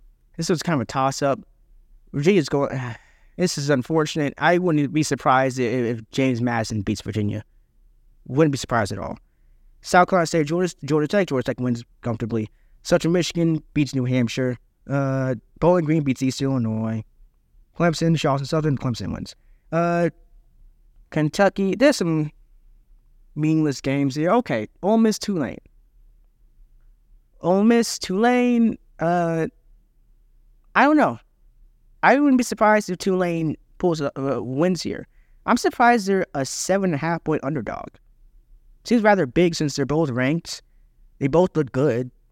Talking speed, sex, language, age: 140 wpm, male, English, 20-39